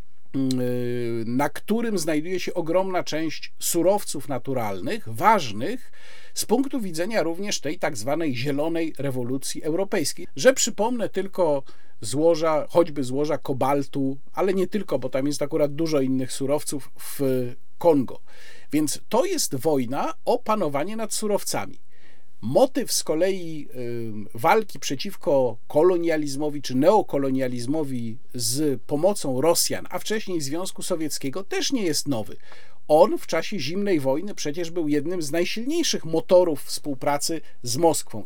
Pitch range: 135-195 Hz